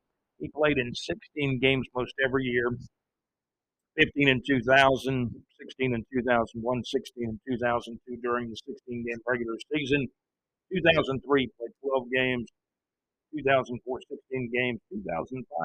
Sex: male